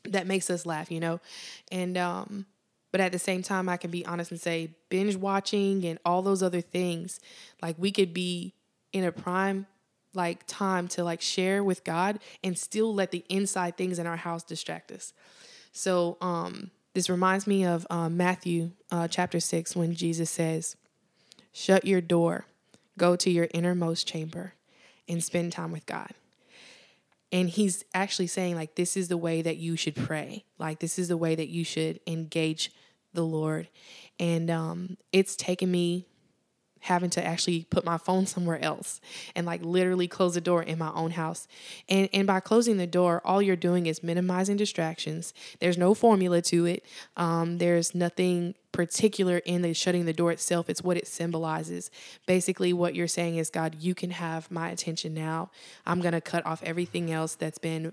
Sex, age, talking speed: female, 20-39, 185 wpm